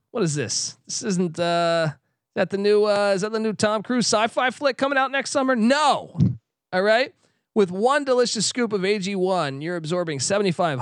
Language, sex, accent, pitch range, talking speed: English, male, American, 140-190 Hz, 195 wpm